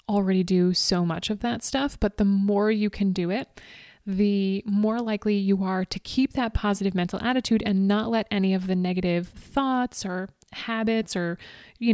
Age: 30-49